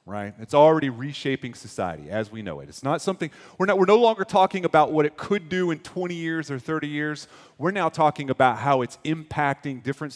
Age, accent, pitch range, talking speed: 30-49, American, 130-170 Hz, 220 wpm